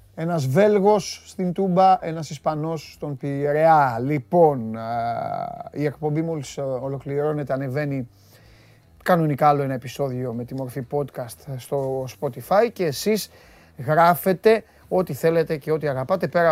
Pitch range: 125-180 Hz